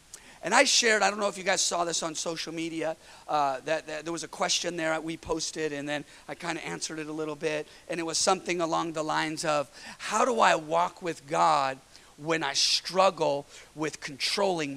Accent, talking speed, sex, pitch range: American, 220 wpm, male, 150-185 Hz